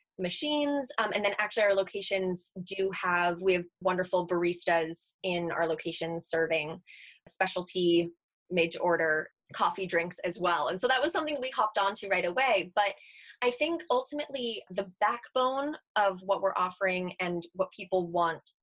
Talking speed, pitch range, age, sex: 160 wpm, 175-210 Hz, 20-39, female